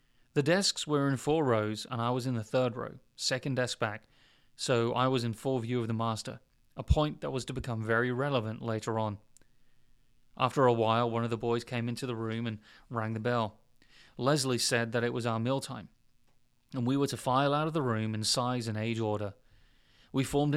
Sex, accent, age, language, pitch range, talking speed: male, British, 30-49, English, 115-135 Hz, 215 wpm